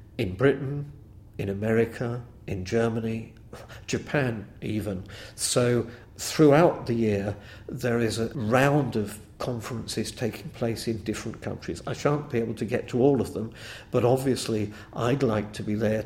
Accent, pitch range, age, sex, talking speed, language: British, 110-135 Hz, 50-69, male, 150 wpm, English